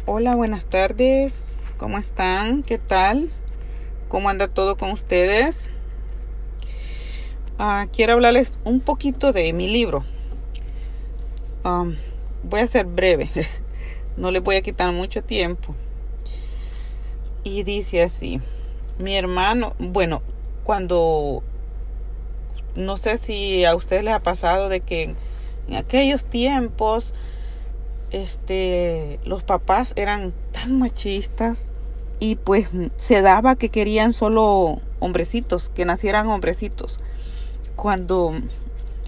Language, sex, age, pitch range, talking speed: Spanish, female, 30-49, 165-220 Hz, 105 wpm